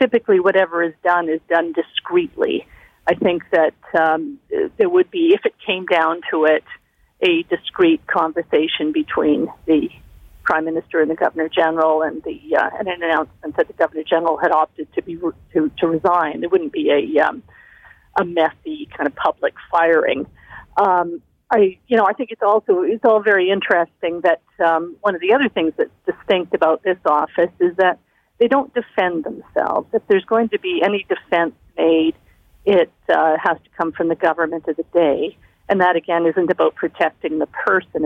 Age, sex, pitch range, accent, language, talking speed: 50-69, female, 160-235 Hz, American, English, 185 wpm